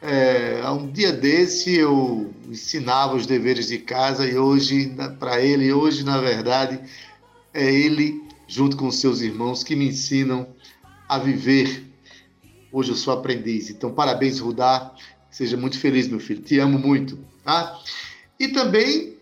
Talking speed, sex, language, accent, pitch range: 150 wpm, male, Portuguese, Brazilian, 130-155 Hz